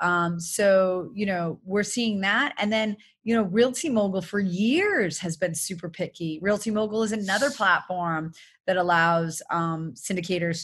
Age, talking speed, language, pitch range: 30-49, 160 wpm, English, 170-215 Hz